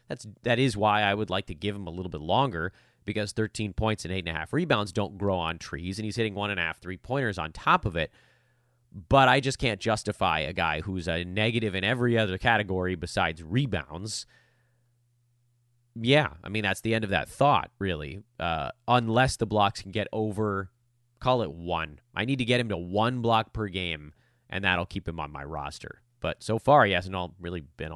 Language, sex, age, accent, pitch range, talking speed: English, male, 30-49, American, 95-125 Hz, 215 wpm